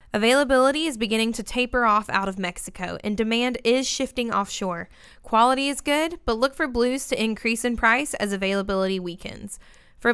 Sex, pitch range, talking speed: female, 205-260 Hz, 170 wpm